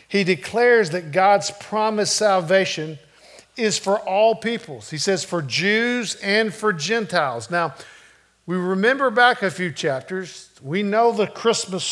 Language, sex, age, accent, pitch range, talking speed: English, male, 50-69, American, 160-200 Hz, 140 wpm